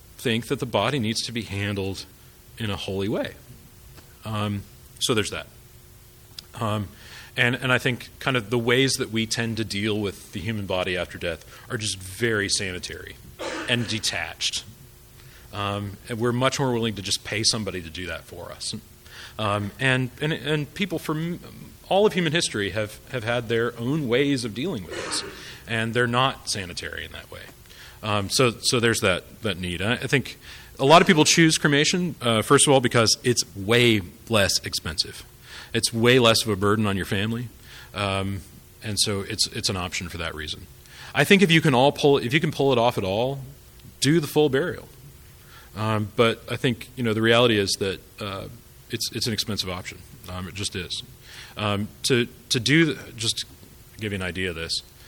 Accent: American